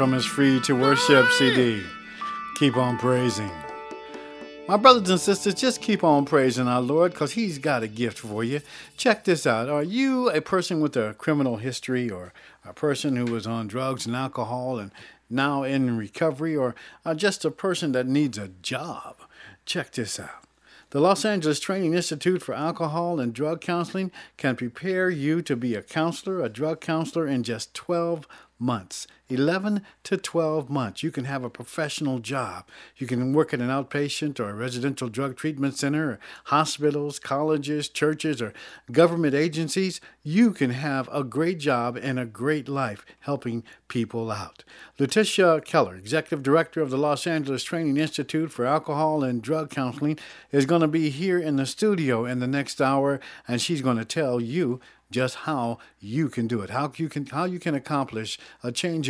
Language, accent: English, American